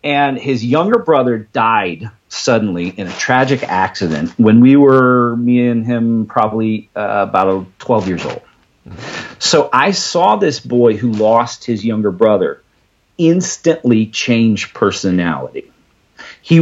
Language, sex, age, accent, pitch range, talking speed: English, male, 40-59, American, 110-140 Hz, 130 wpm